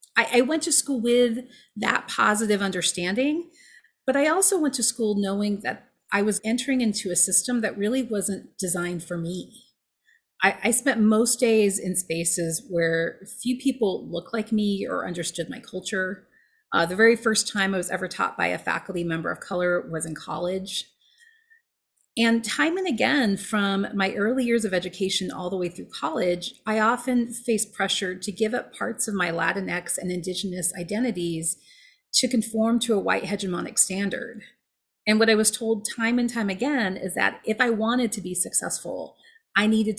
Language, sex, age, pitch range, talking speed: English, female, 30-49, 185-245 Hz, 175 wpm